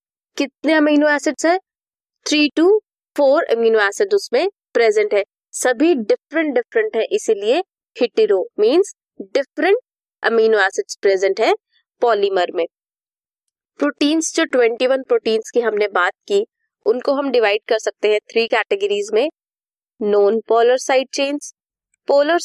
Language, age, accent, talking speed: English, 20-39, Indian, 125 wpm